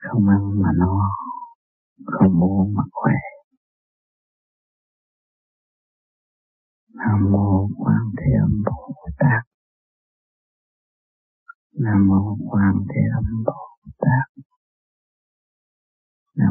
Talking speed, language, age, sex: 85 wpm, Vietnamese, 40-59, male